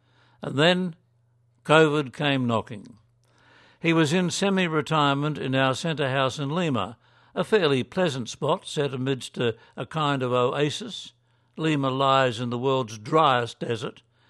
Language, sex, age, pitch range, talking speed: English, male, 60-79, 120-155 Hz, 140 wpm